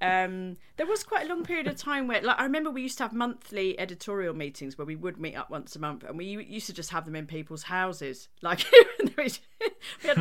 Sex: female